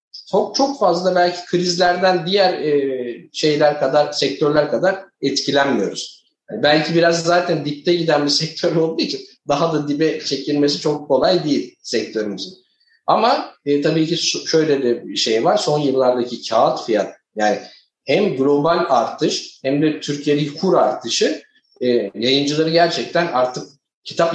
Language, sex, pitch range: Turkish, male, 120-155 Hz